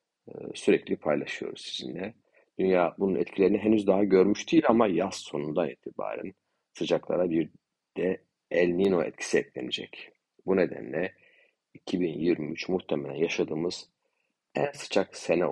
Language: Turkish